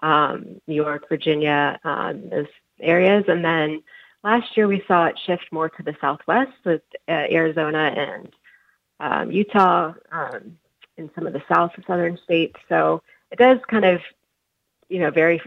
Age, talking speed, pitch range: 30-49, 165 wpm, 160-185 Hz